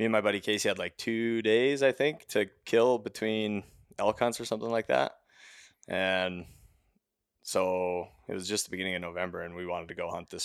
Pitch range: 85-105 Hz